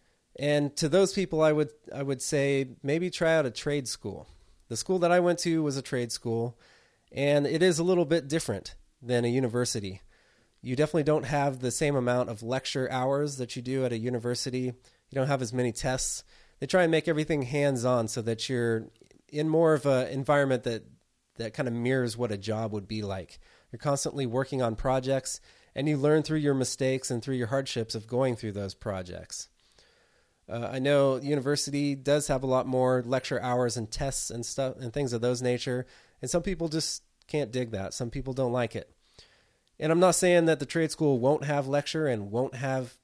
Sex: male